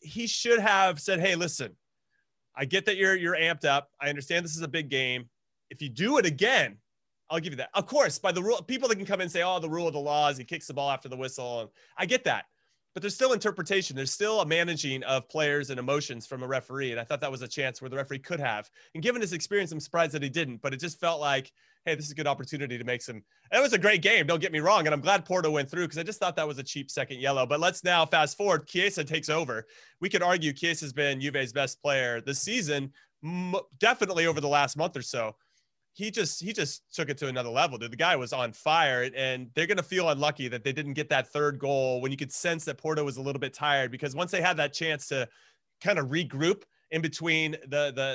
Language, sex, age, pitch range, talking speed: English, male, 30-49, 135-175 Hz, 265 wpm